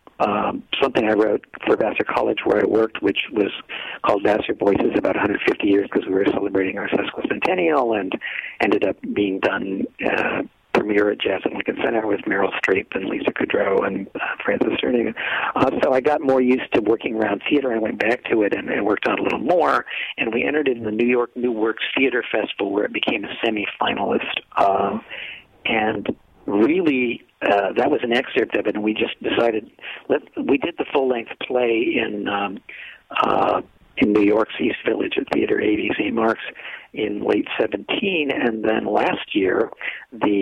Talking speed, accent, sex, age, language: 190 wpm, American, male, 50-69, English